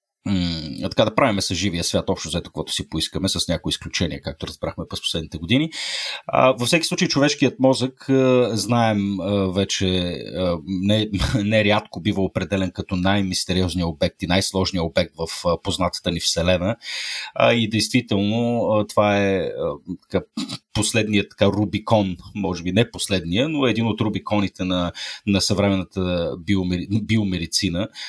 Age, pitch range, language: 30-49, 90-110 Hz, Bulgarian